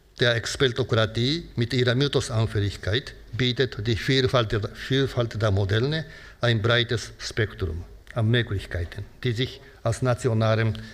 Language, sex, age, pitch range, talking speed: German, male, 60-79, 110-130 Hz, 110 wpm